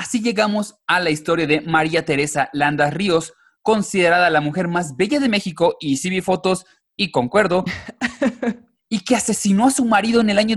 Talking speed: 180 wpm